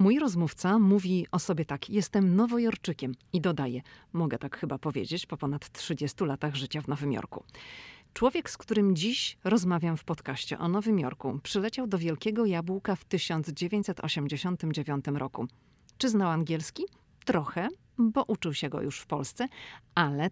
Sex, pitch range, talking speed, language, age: female, 145-195 Hz, 150 wpm, Polish, 40-59